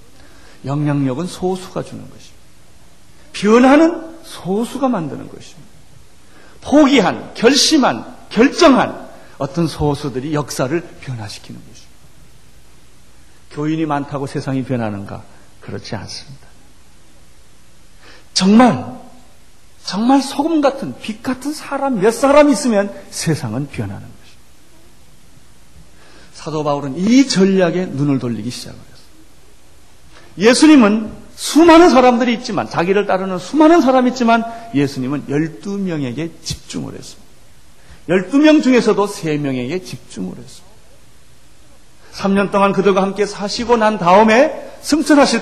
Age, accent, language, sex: 40-59, native, Korean, male